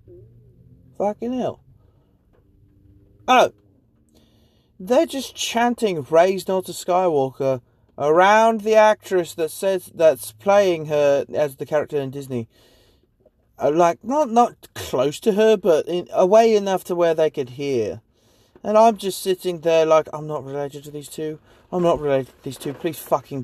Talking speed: 150 wpm